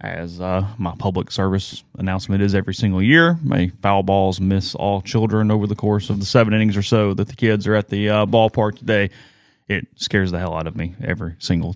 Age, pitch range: 30-49, 100-120 Hz